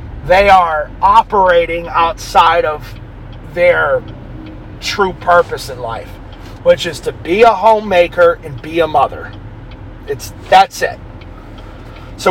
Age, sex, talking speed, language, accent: 30-49, male, 115 wpm, English, American